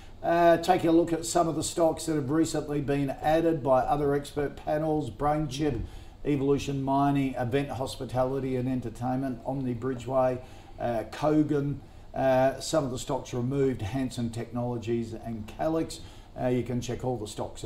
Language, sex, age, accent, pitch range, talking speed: English, male, 50-69, Australian, 110-145 Hz, 155 wpm